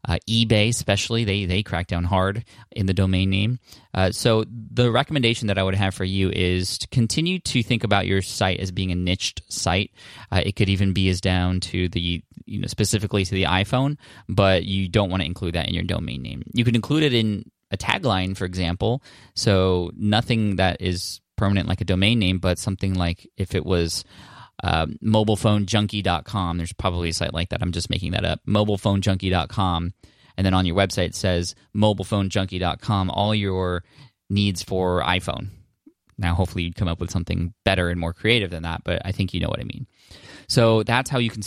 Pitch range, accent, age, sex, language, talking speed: 90-110 Hz, American, 20-39, male, English, 200 wpm